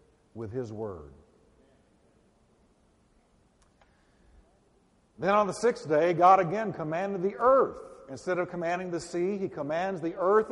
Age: 50-69